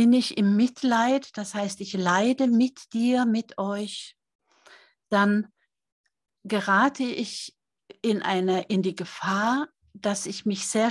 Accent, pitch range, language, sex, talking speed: German, 195-235 Hz, German, female, 125 wpm